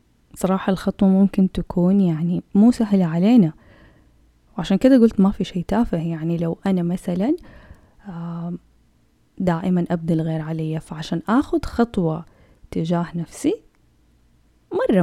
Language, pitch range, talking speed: Arabic, 165-210 Hz, 115 wpm